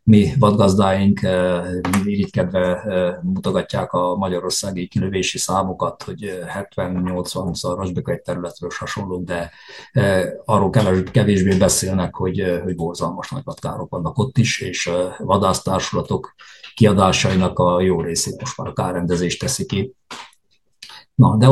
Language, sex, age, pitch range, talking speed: Hungarian, male, 50-69, 90-110 Hz, 115 wpm